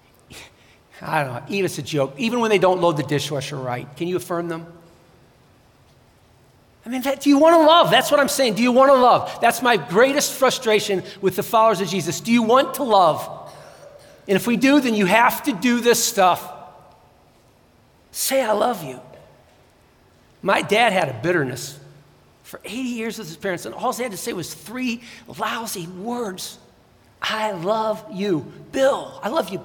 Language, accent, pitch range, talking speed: English, American, 170-235 Hz, 185 wpm